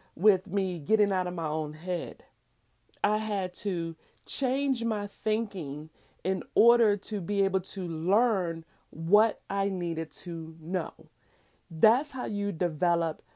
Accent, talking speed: American, 135 wpm